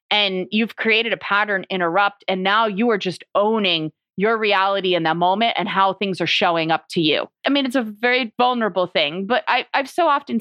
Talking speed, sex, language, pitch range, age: 210 wpm, female, English, 195-255 Hz, 30-49